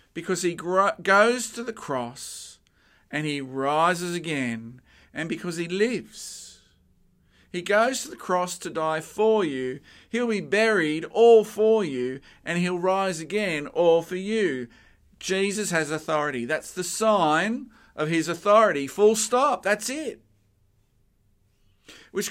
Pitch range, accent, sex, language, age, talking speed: 130-210 Hz, Australian, male, English, 50-69, 135 wpm